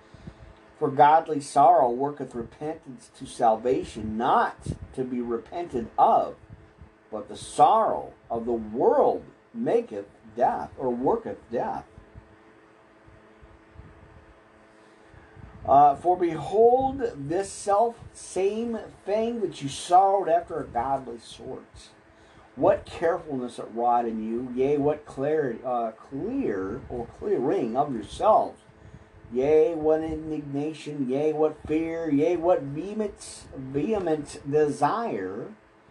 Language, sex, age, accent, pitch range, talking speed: English, male, 50-69, American, 110-170 Hz, 105 wpm